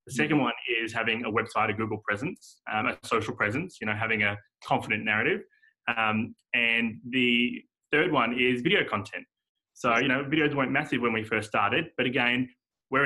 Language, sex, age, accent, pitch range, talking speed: English, male, 20-39, Australian, 110-130 Hz, 190 wpm